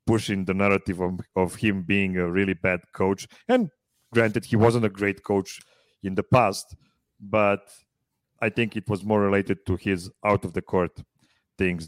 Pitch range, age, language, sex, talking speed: 95-115 Hz, 40-59, English, male, 175 wpm